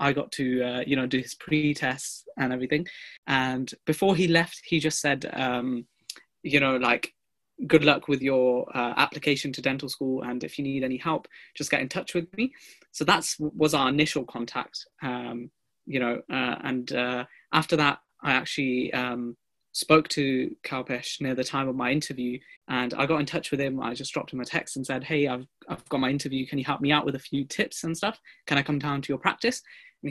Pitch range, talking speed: 130-155 Hz, 220 wpm